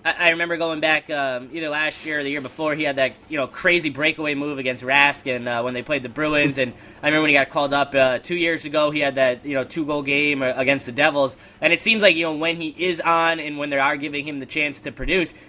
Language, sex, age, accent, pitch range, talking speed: English, male, 10-29, American, 140-165 Hz, 280 wpm